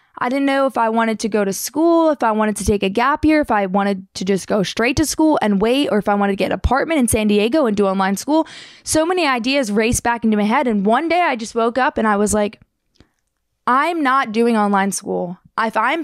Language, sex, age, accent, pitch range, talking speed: English, female, 20-39, American, 220-310 Hz, 260 wpm